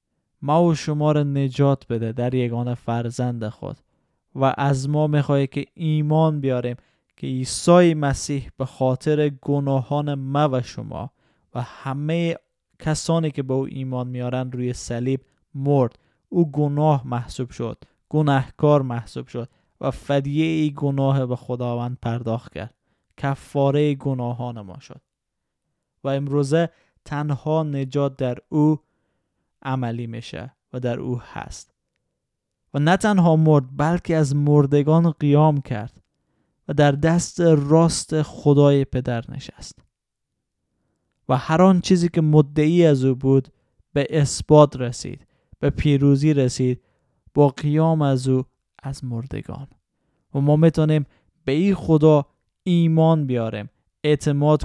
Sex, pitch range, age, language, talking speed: male, 125-150 Hz, 20-39, Persian, 125 wpm